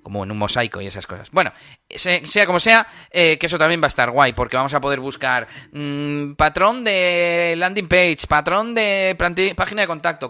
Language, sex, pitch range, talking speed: Spanish, male, 115-160 Hz, 205 wpm